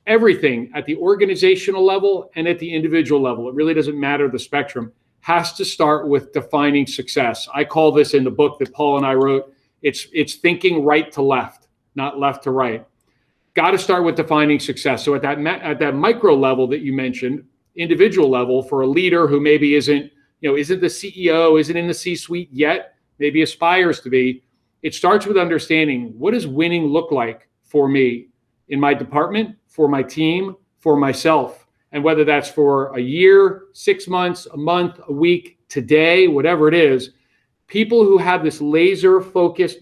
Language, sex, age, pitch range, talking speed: English, male, 40-59, 140-170 Hz, 185 wpm